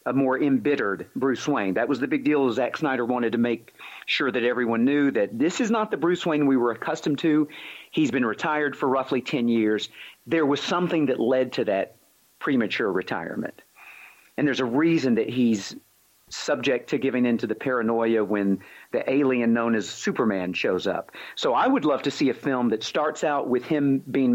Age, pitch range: 40-59, 115-145 Hz